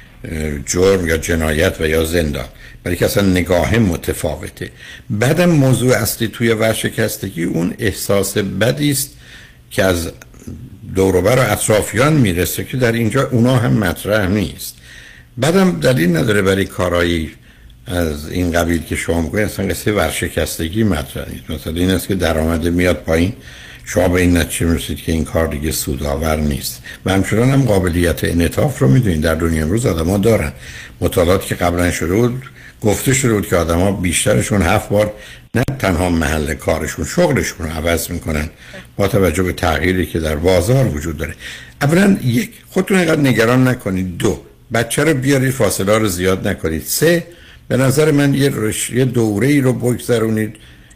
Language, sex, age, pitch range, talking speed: Persian, male, 60-79, 85-120 Hz, 150 wpm